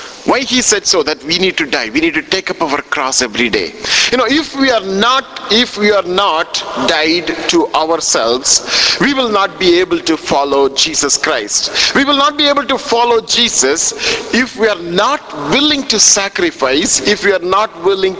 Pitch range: 155-255 Hz